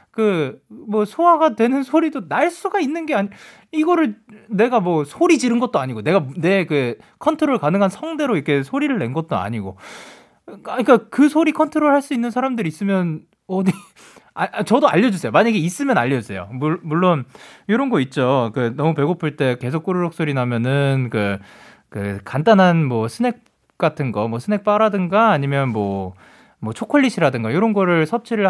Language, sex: Korean, male